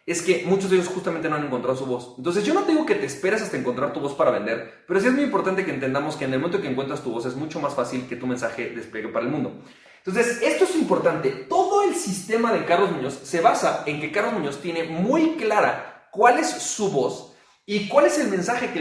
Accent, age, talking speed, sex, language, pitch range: Mexican, 30-49, 255 wpm, male, Spanish, 145-205 Hz